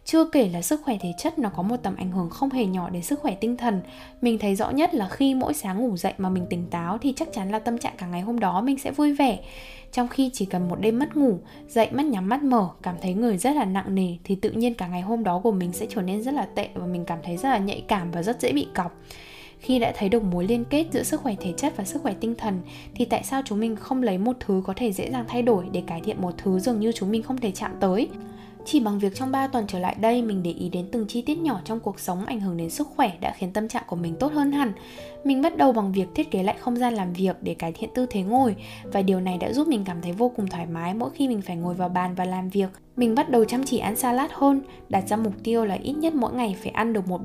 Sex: female